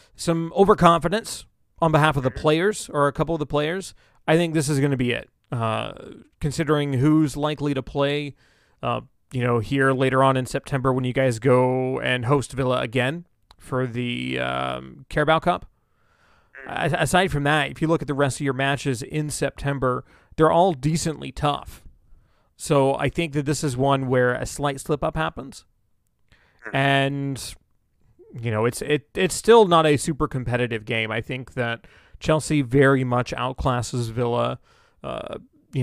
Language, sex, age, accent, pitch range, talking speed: English, male, 30-49, American, 125-150 Hz, 170 wpm